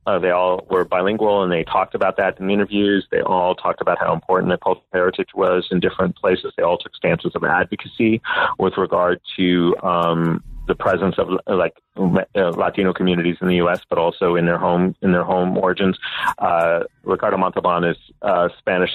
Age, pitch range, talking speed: 30-49, 90-105 Hz, 195 wpm